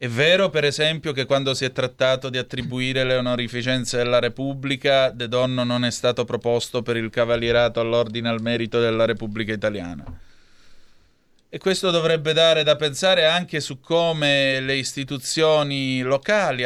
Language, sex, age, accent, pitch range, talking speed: Italian, male, 30-49, native, 120-150 Hz, 150 wpm